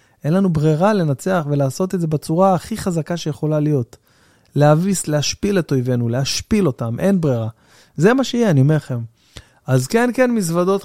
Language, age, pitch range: Hebrew, 20-39, 130-180 Hz